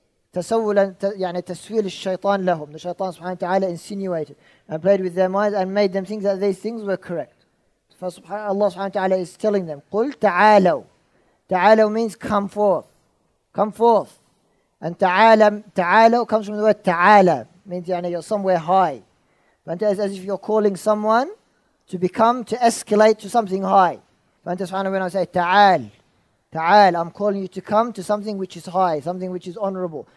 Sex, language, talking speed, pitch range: male, English, 155 wpm, 180-210 Hz